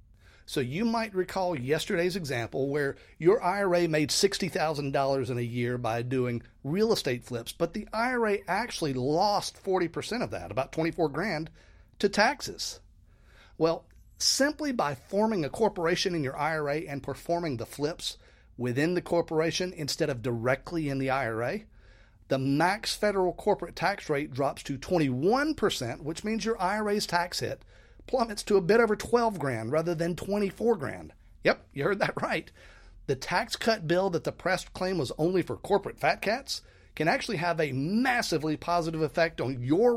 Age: 40-59